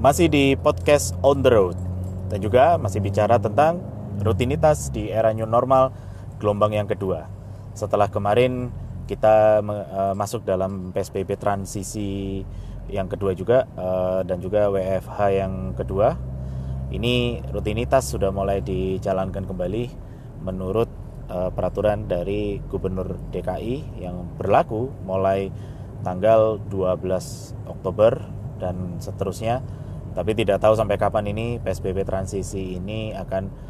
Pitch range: 95-110 Hz